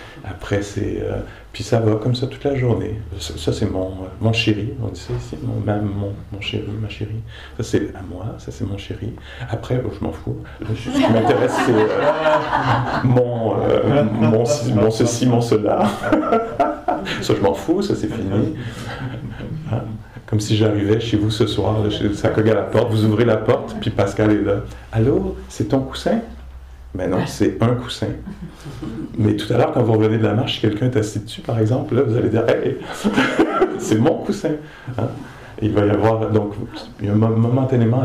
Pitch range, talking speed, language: 105-125 Hz, 195 wpm, English